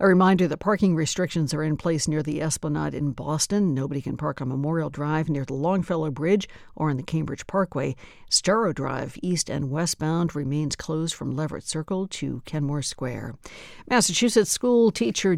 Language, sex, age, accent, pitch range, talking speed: English, female, 60-79, American, 145-185 Hz, 170 wpm